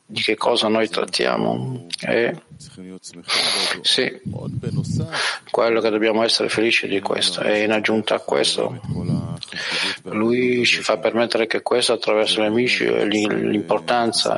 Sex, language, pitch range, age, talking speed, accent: male, Italian, 100-115 Hz, 50-69, 120 wpm, native